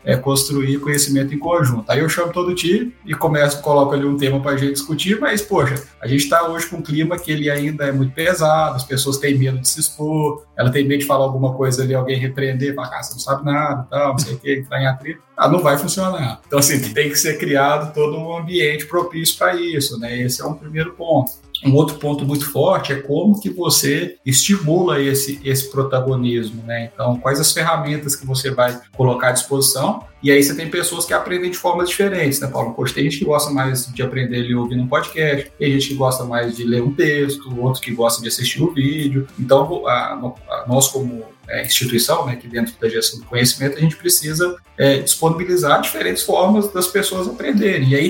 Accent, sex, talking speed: Brazilian, male, 225 wpm